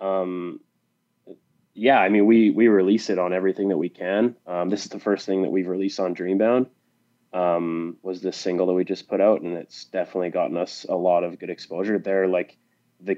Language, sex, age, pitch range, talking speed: English, male, 20-39, 90-100 Hz, 210 wpm